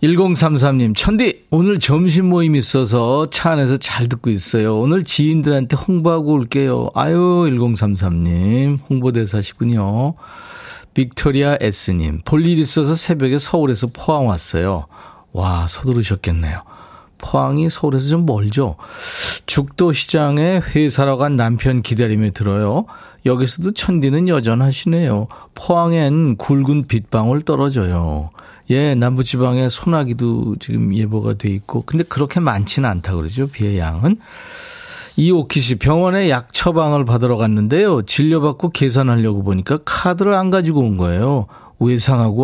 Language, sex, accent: Korean, male, native